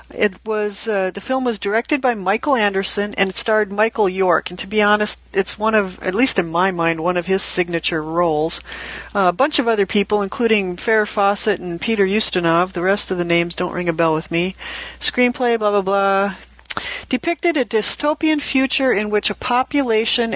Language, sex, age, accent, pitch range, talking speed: English, female, 40-59, American, 190-240 Hz, 200 wpm